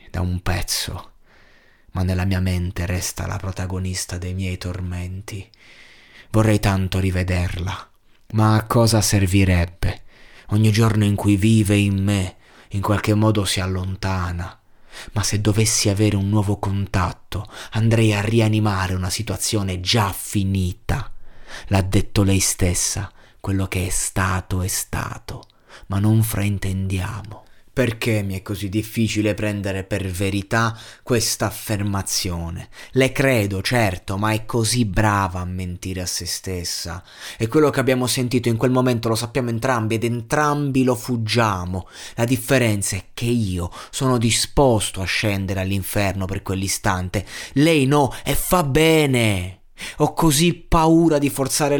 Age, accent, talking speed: 30-49, native, 135 wpm